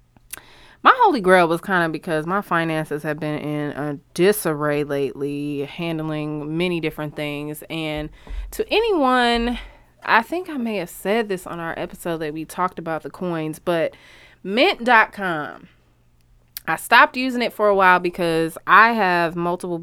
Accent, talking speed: American, 155 wpm